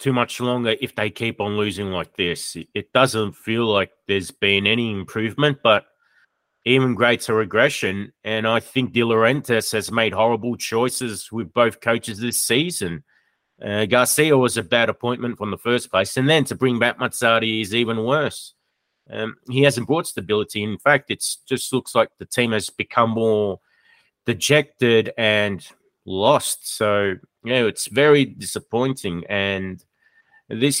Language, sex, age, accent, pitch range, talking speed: English, male, 30-49, Australian, 100-125 Hz, 160 wpm